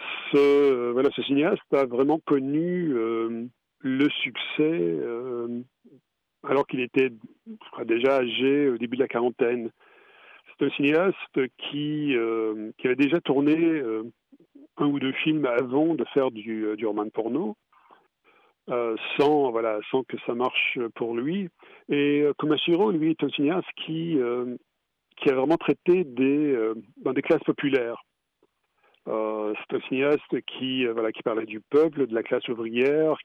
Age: 50-69